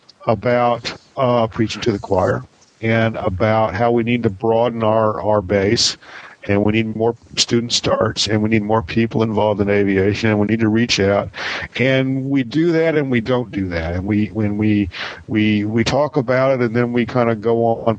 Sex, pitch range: male, 110-135 Hz